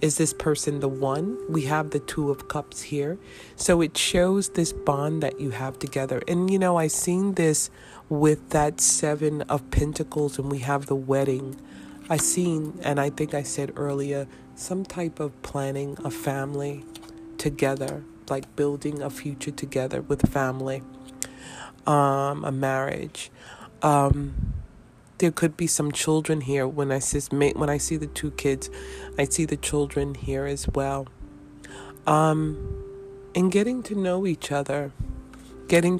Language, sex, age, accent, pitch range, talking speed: English, female, 30-49, American, 135-155 Hz, 150 wpm